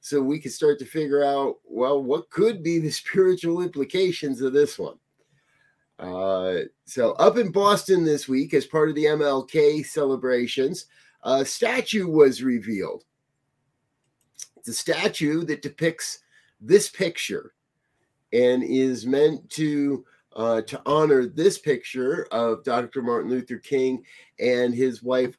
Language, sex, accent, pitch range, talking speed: English, male, American, 125-170 Hz, 135 wpm